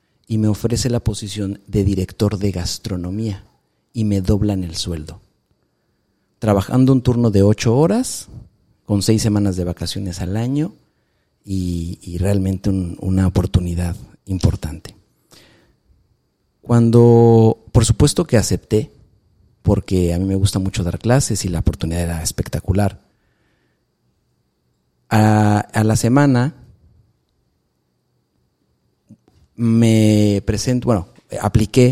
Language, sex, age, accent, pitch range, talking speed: Spanish, male, 40-59, Mexican, 90-110 Hz, 110 wpm